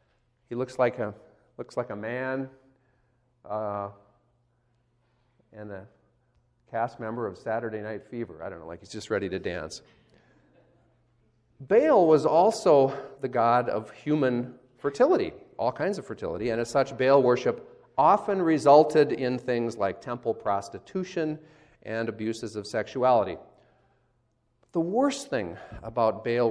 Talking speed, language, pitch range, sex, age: 135 wpm, English, 115-145 Hz, male, 40-59